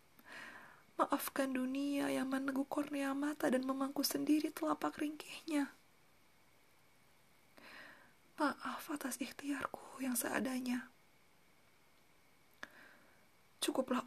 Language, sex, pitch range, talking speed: Indonesian, female, 235-285 Hz, 70 wpm